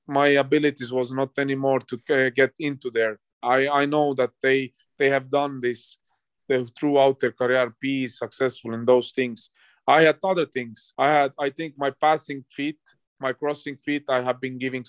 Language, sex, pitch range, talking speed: English, male, 125-145 Hz, 185 wpm